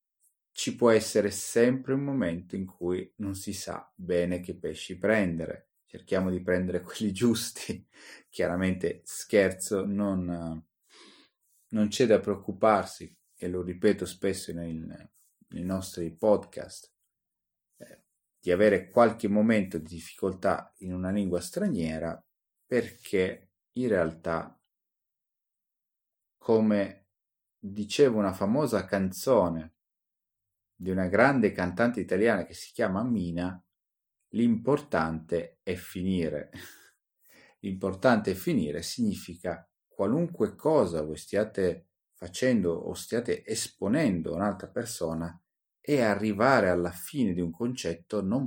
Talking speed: 110 wpm